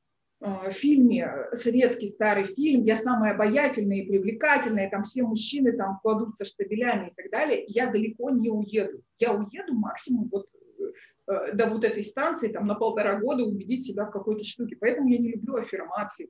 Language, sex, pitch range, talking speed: Russian, female, 205-250 Hz, 160 wpm